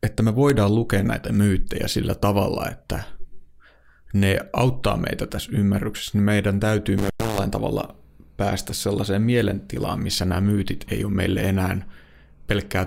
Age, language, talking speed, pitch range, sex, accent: 30-49, Finnish, 140 wpm, 90-110 Hz, male, native